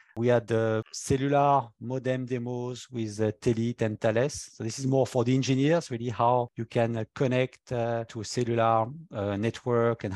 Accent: French